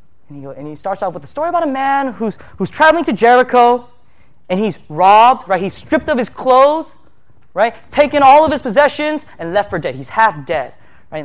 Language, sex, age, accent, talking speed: English, male, 20-39, American, 220 wpm